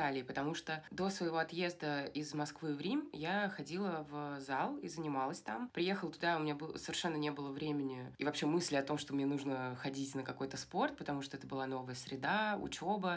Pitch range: 145-180 Hz